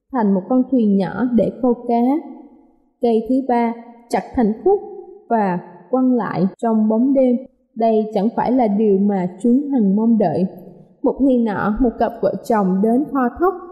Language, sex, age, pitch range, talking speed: Vietnamese, female, 20-39, 220-280 Hz, 175 wpm